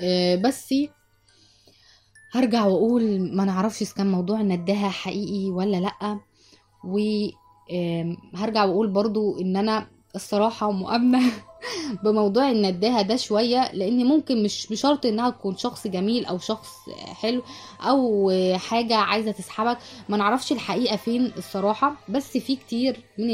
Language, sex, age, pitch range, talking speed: Arabic, female, 20-39, 195-245 Hz, 125 wpm